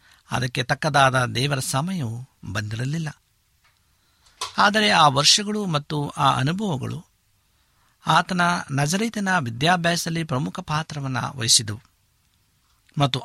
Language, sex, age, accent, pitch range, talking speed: Kannada, male, 60-79, native, 110-160 Hz, 80 wpm